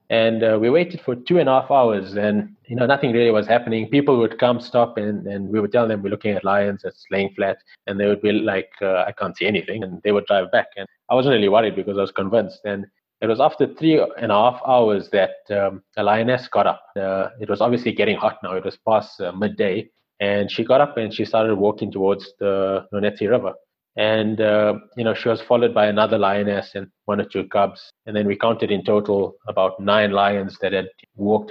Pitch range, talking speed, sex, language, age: 100-120 Hz, 235 wpm, male, English, 20-39